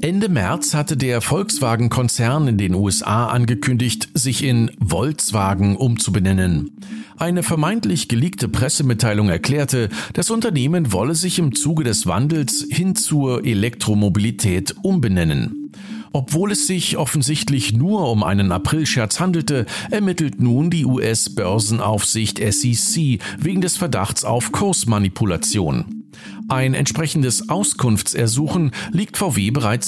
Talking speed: 110 wpm